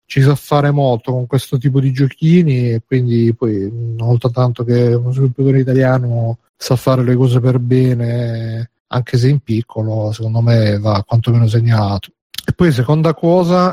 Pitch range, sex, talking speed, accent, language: 115-135 Hz, male, 160 wpm, native, Italian